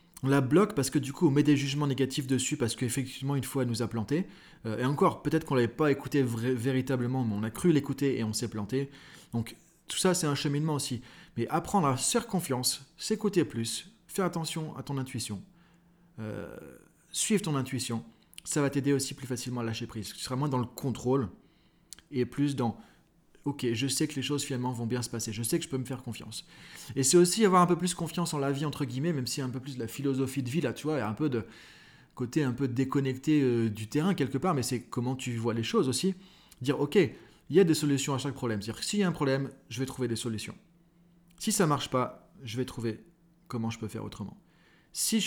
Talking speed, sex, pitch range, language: 245 wpm, male, 125-160 Hz, French